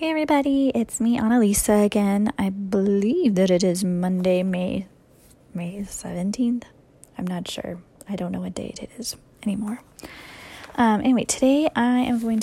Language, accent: English, American